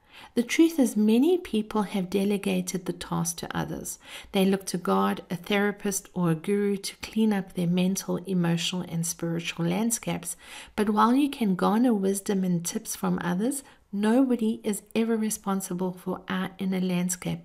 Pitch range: 180-225 Hz